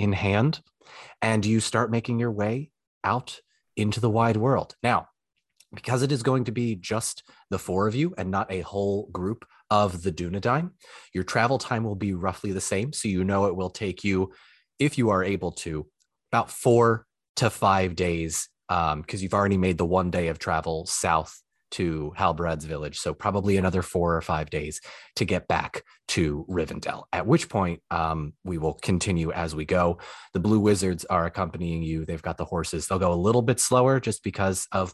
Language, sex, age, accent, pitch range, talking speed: English, male, 30-49, American, 90-110 Hz, 195 wpm